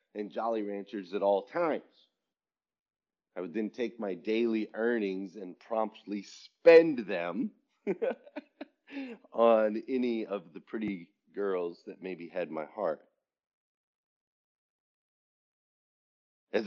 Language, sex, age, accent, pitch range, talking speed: English, male, 30-49, American, 100-120 Hz, 105 wpm